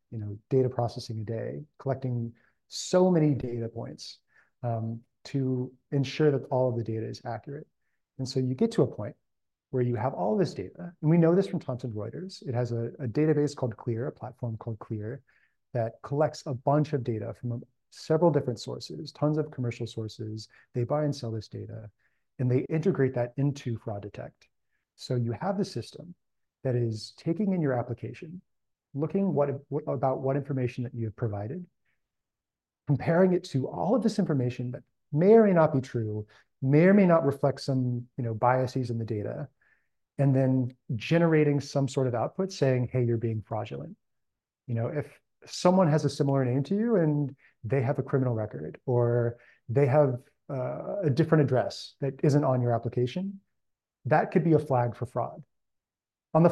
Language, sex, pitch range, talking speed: English, male, 120-150 Hz, 185 wpm